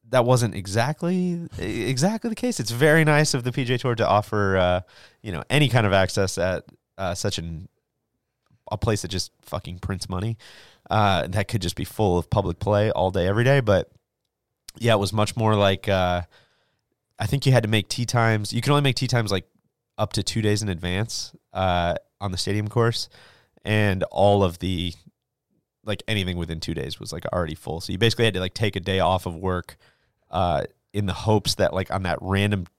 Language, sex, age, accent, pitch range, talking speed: English, male, 30-49, American, 90-115 Hz, 210 wpm